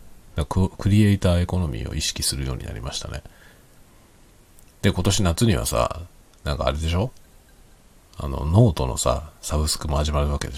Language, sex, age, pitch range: Japanese, male, 40-59, 75-100 Hz